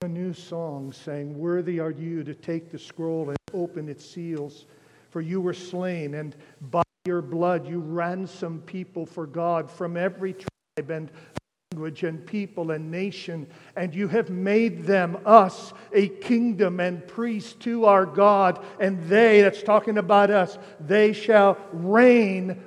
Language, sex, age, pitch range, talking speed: English, male, 50-69, 170-220 Hz, 155 wpm